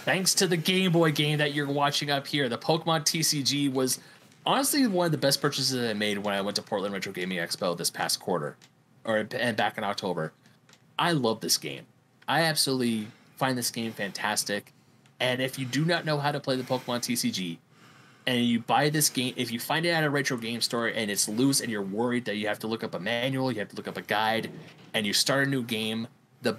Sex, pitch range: male, 120-165 Hz